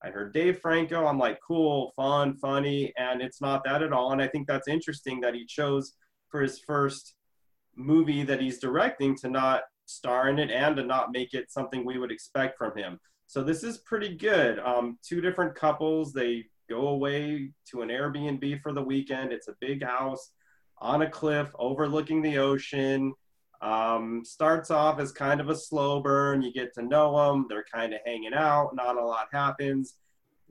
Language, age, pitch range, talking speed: English, 30-49, 130-145 Hz, 190 wpm